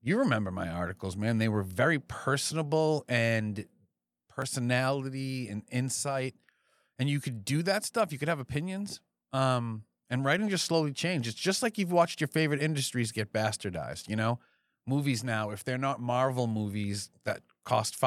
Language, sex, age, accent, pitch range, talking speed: English, male, 40-59, American, 105-135 Hz, 165 wpm